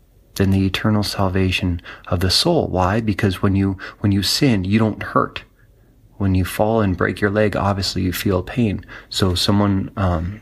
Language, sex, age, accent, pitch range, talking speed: English, male, 30-49, American, 95-110 Hz, 180 wpm